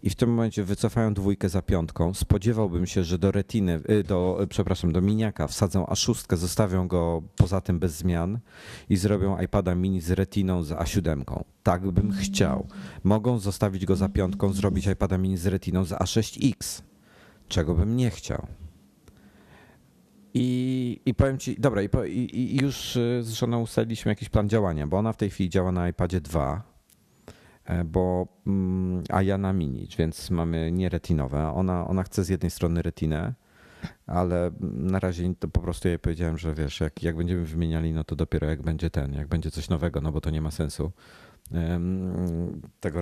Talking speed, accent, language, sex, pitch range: 165 wpm, native, Polish, male, 85-105 Hz